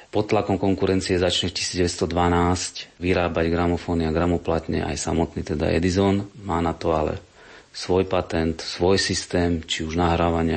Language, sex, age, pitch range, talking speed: Slovak, male, 30-49, 85-95 Hz, 140 wpm